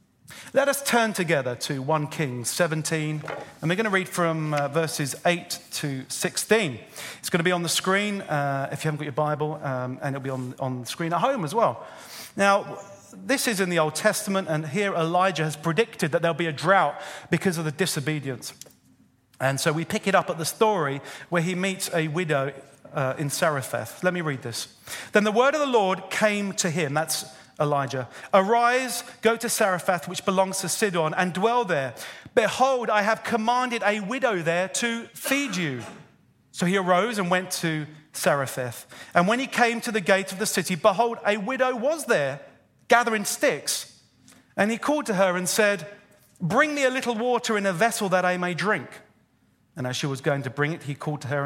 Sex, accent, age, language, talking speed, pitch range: male, British, 40-59, English, 205 wpm, 150-210 Hz